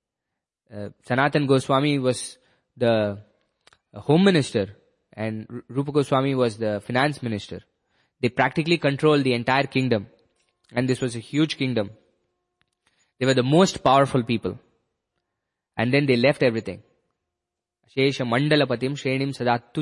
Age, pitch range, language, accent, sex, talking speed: 20-39, 115-145 Hz, English, Indian, male, 125 wpm